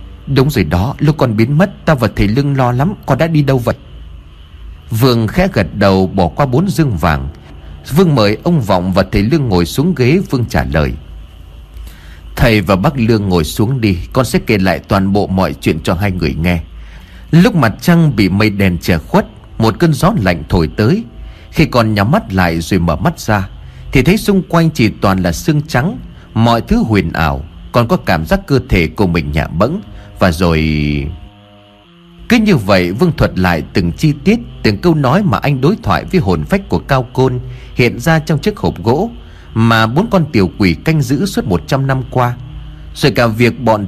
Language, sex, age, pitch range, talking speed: Vietnamese, male, 30-49, 90-145 Hz, 205 wpm